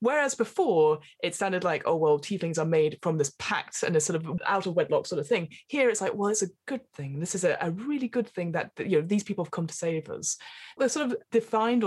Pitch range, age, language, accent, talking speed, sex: 170-225 Hz, 20-39, English, British, 270 wpm, female